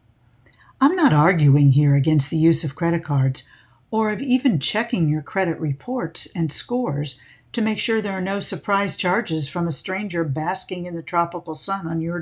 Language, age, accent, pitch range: English, 50-69, American, 135-185 Hz